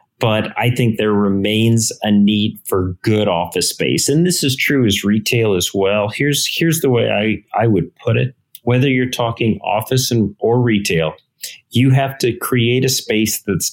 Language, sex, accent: English, male, American